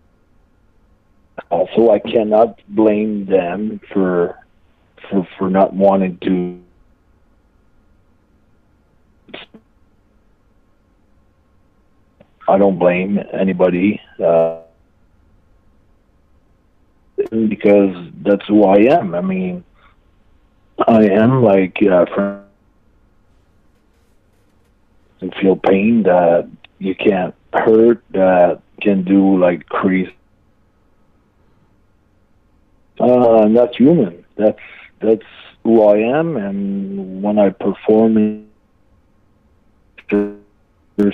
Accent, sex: American, male